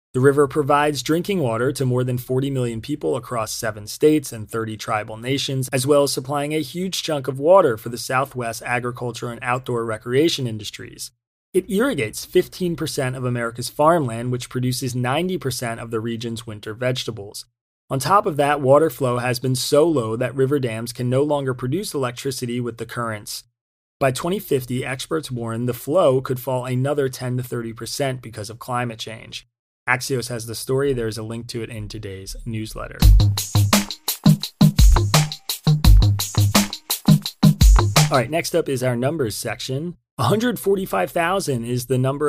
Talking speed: 155 wpm